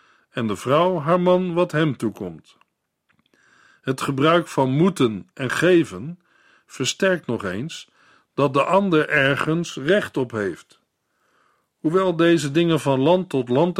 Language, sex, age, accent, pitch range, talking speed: Dutch, male, 50-69, Dutch, 130-170 Hz, 135 wpm